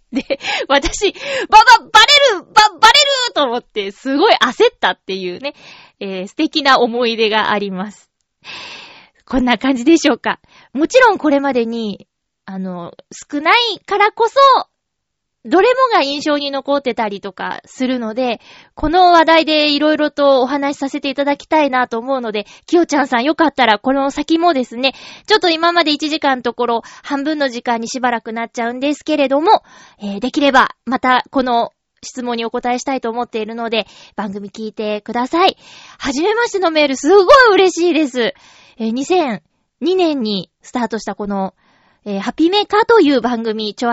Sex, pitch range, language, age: female, 230-315 Hz, Japanese, 20-39